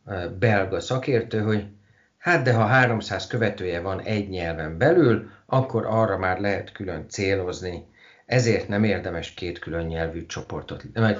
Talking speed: 140 wpm